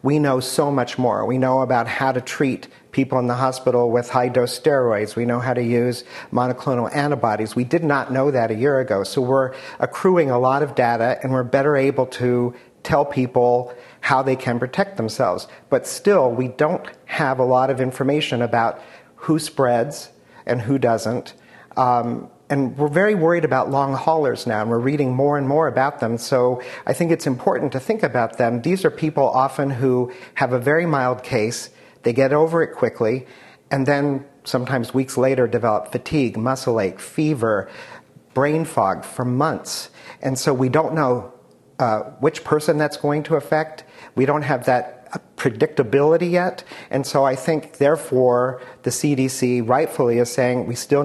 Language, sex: English, male